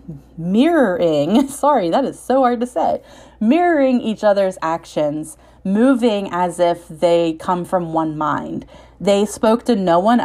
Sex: female